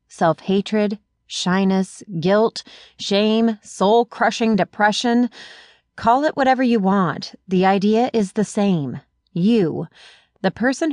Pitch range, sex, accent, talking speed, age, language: 165-230 Hz, female, American, 105 wpm, 30-49, English